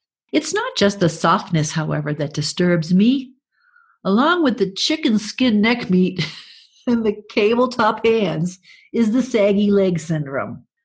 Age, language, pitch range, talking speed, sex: 50-69, English, 165-245 Hz, 145 wpm, female